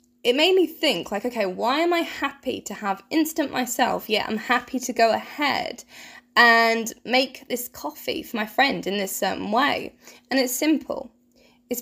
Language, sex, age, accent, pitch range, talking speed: English, female, 20-39, British, 235-280 Hz, 180 wpm